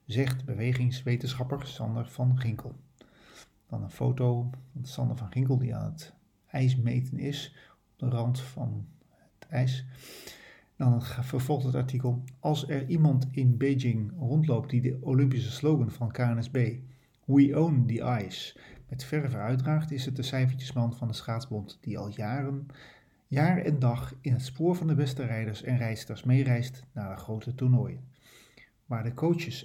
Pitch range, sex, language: 120-140 Hz, male, Dutch